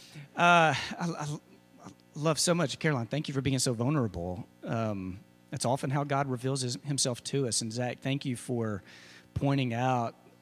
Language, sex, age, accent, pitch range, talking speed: English, male, 40-59, American, 125-155 Hz, 165 wpm